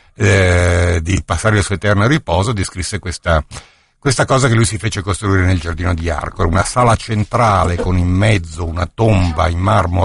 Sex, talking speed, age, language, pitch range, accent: male, 180 wpm, 50-69, Italian, 85-110 Hz, native